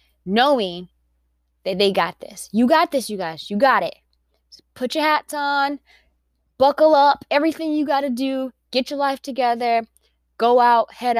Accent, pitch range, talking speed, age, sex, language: American, 190-260 Hz, 165 wpm, 20-39, female, English